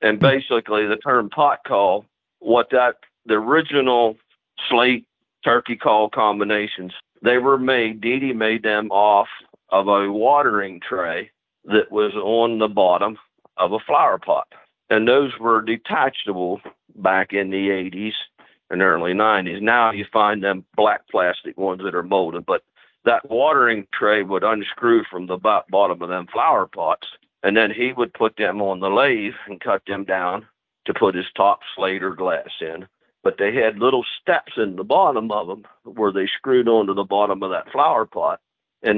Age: 50-69